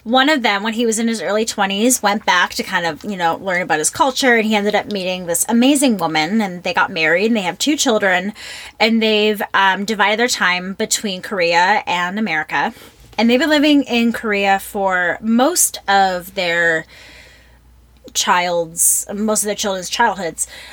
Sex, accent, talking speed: female, American, 185 wpm